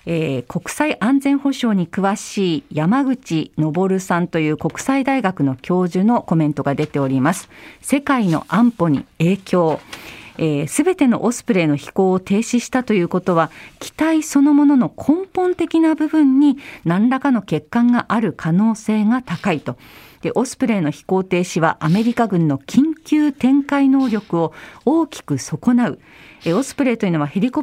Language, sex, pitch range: Japanese, female, 175-275 Hz